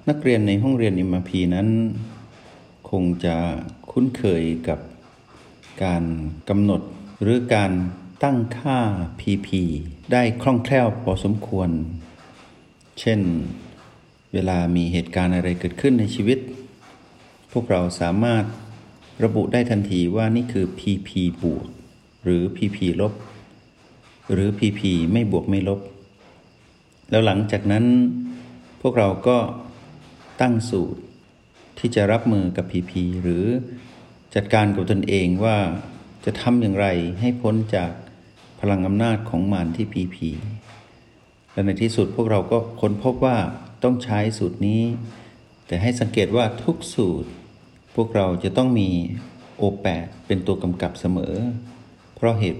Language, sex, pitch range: Thai, male, 90-115 Hz